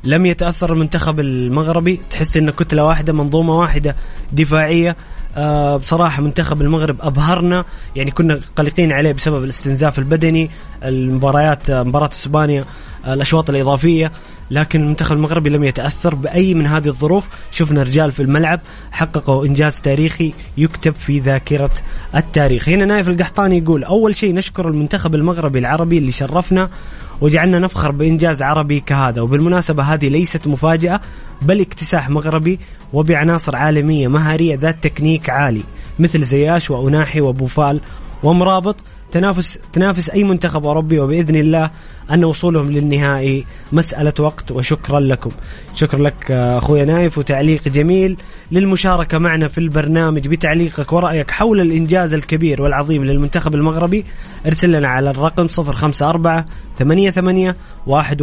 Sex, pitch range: male, 145-170 Hz